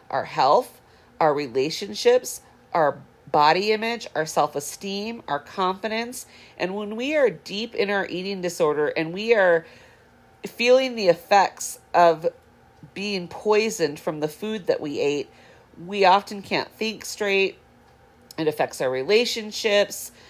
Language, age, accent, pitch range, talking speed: English, 40-59, American, 165-220 Hz, 135 wpm